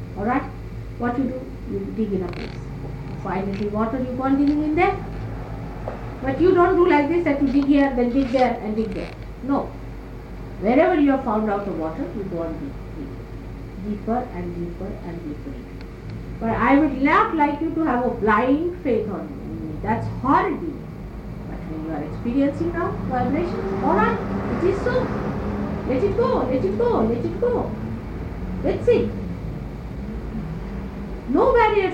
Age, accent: 50-69, Indian